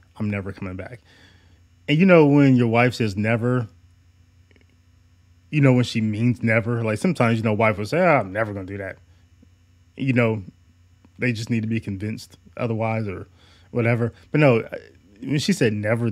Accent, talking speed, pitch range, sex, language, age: American, 190 wpm, 90-120 Hz, male, English, 20-39